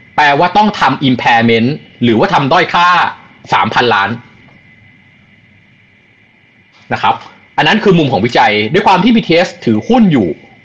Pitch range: 115-175 Hz